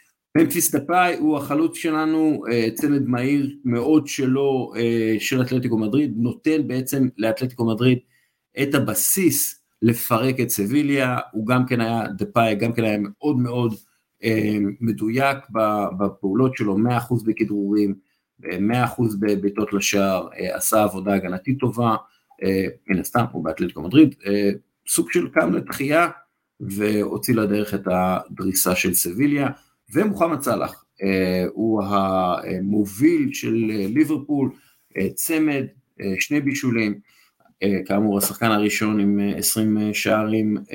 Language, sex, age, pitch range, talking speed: Hebrew, male, 50-69, 105-135 Hz, 110 wpm